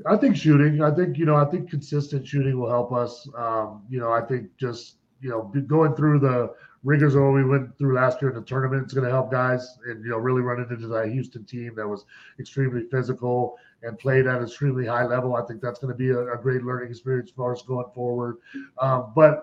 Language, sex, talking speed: English, male, 240 wpm